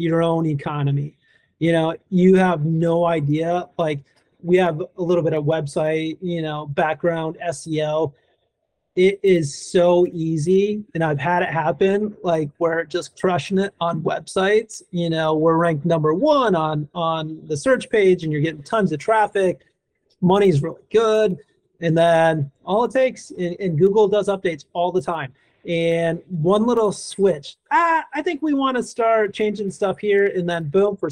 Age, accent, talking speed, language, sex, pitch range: 30-49, American, 170 wpm, English, male, 155-185 Hz